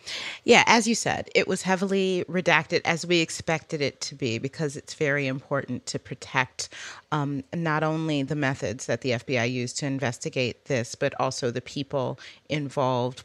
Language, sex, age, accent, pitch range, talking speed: English, female, 30-49, American, 135-175 Hz, 170 wpm